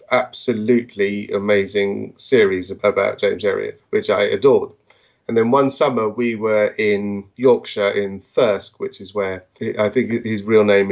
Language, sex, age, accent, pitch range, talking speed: English, male, 30-49, British, 105-135 Hz, 150 wpm